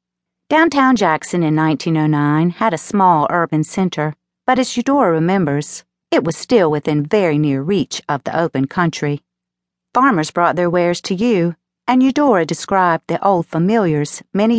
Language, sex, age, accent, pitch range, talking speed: English, female, 50-69, American, 150-215 Hz, 150 wpm